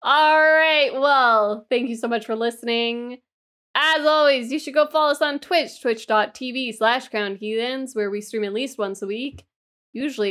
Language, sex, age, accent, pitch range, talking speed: English, female, 10-29, American, 205-270 Hz, 170 wpm